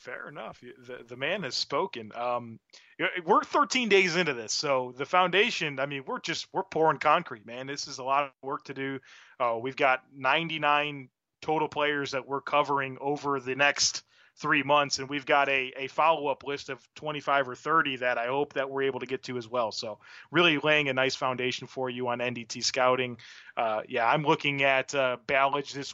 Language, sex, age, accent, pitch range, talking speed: English, male, 30-49, American, 125-150 Hz, 205 wpm